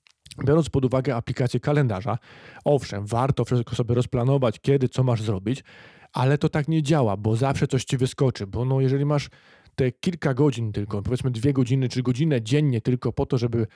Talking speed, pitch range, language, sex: 185 wpm, 115-135 Hz, Polish, male